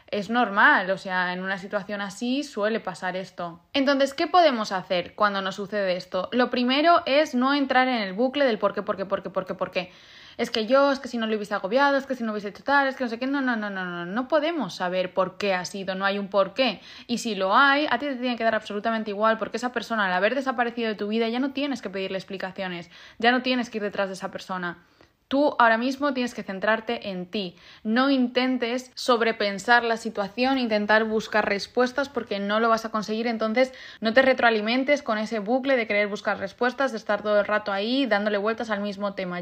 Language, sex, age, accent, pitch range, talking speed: Spanish, female, 20-39, Spanish, 205-255 Hz, 240 wpm